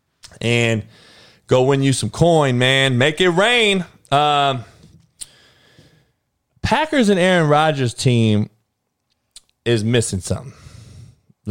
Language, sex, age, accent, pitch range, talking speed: English, male, 20-39, American, 105-135 Hz, 100 wpm